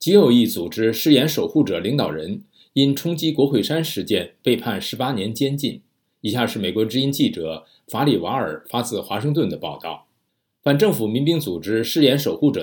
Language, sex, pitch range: Chinese, male, 110-155 Hz